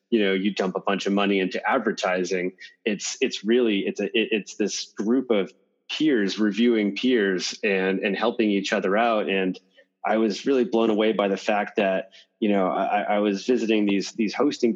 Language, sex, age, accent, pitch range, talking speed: English, male, 30-49, American, 100-120 Hz, 195 wpm